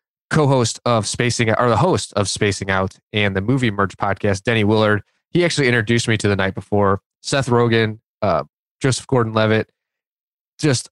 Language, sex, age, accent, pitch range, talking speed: English, male, 20-39, American, 100-125 Hz, 170 wpm